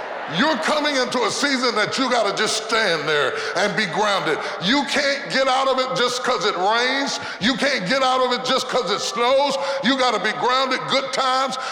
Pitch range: 260-300 Hz